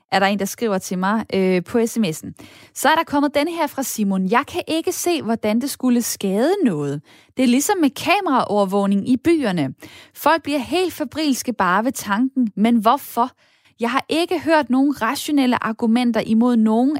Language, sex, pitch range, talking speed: Danish, female, 200-265 Hz, 180 wpm